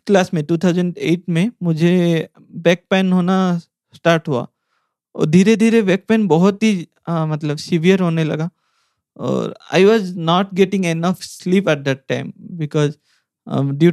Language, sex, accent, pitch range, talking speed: English, male, Indian, 145-180 Hz, 105 wpm